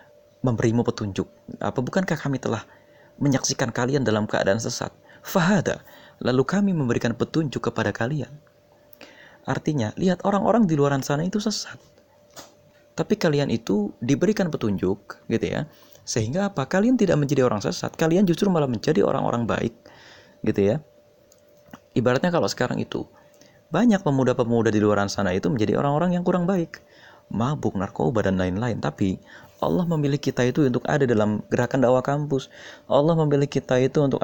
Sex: male